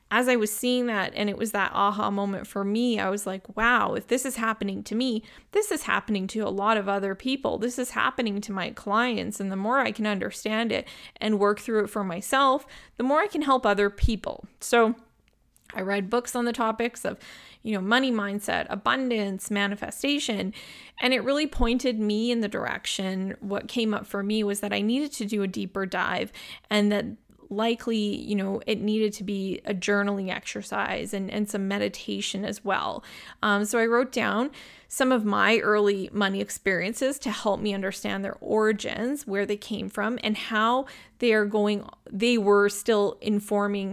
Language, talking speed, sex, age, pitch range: English, 195 wpm, female, 20-39, 200-240 Hz